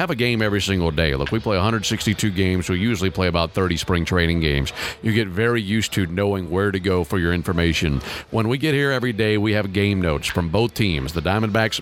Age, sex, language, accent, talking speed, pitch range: 50-69, male, English, American, 230 wpm, 95-115 Hz